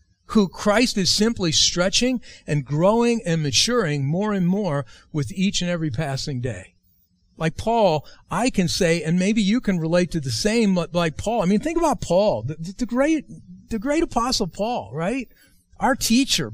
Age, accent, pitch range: 50-69, American, 165-230 Hz